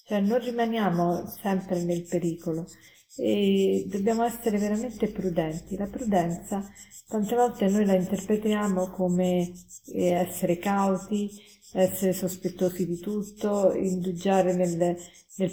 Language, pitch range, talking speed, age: Italian, 180-210 Hz, 110 wpm, 50-69